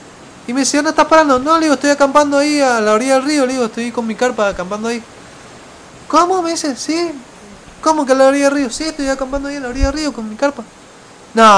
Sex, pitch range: male, 190-270 Hz